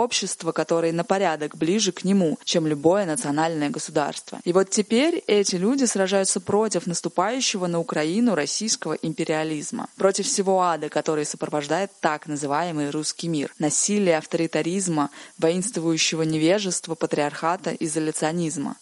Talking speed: 120 wpm